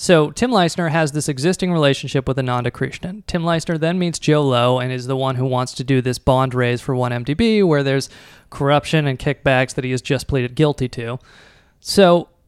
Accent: American